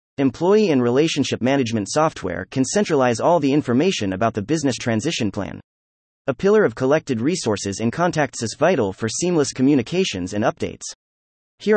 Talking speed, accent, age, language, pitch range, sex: 155 wpm, American, 30-49, English, 110-160 Hz, male